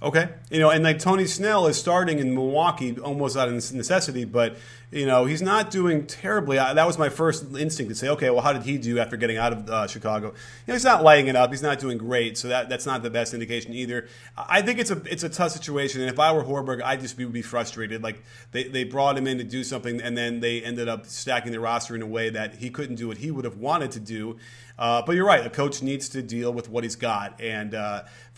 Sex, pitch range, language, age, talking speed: male, 120-155 Hz, English, 30-49, 265 wpm